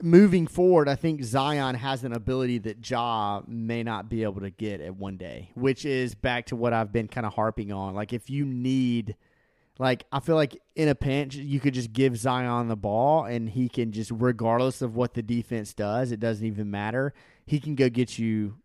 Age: 30-49